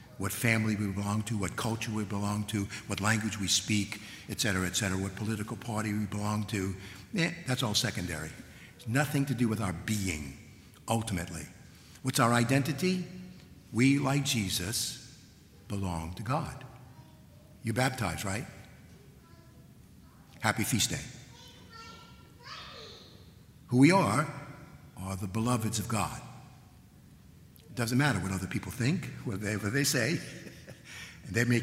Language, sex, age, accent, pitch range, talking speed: English, male, 60-79, American, 100-125 Hz, 140 wpm